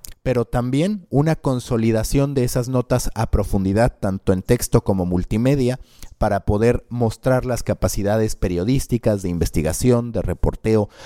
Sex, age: male, 30-49